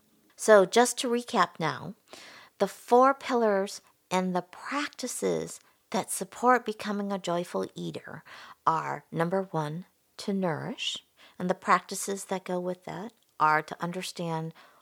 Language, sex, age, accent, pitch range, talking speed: English, female, 50-69, American, 170-215 Hz, 130 wpm